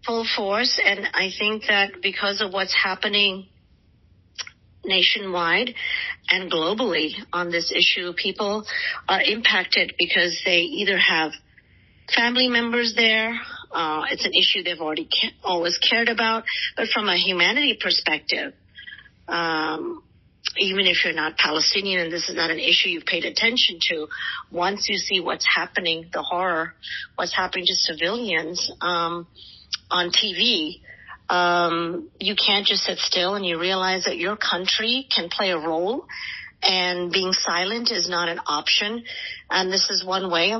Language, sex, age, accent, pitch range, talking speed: English, female, 40-59, American, 175-215 Hz, 145 wpm